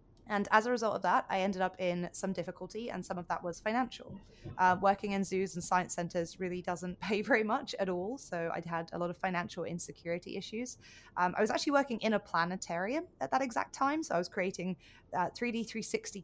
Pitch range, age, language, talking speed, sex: 175-215 Hz, 20-39, English, 220 wpm, female